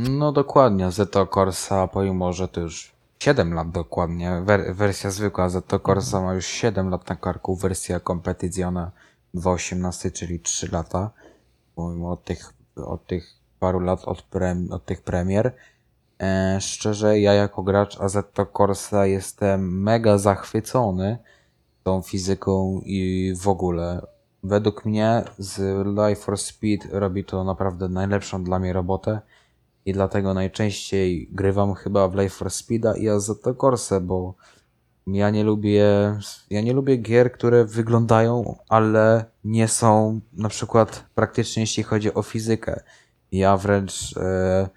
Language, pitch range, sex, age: Polish, 95-110 Hz, male, 20-39